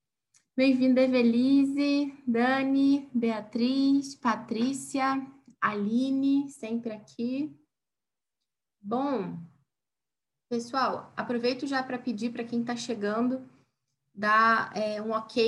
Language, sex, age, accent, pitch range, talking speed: Portuguese, female, 10-29, Brazilian, 185-245 Hz, 90 wpm